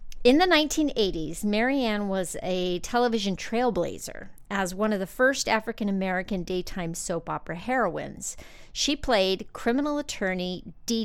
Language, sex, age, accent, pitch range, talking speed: English, female, 50-69, American, 180-240 Hz, 125 wpm